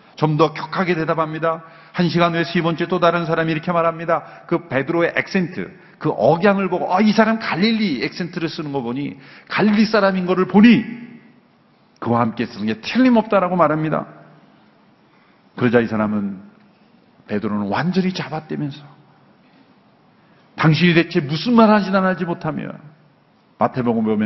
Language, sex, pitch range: Korean, male, 135-195 Hz